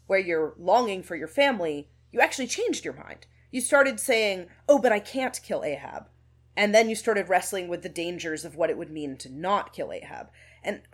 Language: English